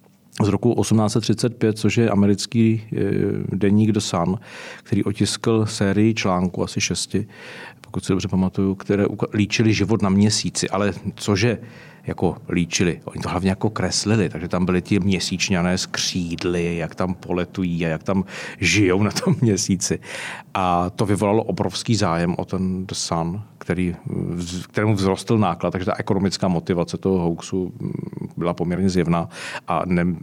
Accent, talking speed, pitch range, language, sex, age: native, 140 wpm, 90-105 Hz, Czech, male, 40-59